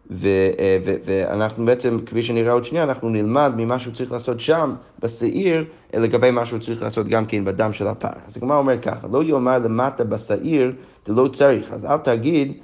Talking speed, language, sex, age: 190 wpm, Hebrew, male, 30-49